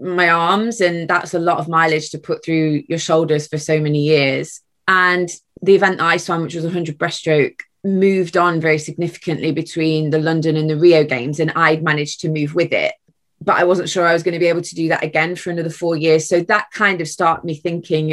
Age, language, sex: 20-39, English, female